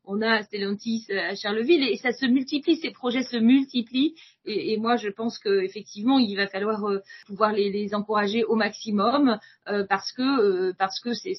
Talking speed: 195 wpm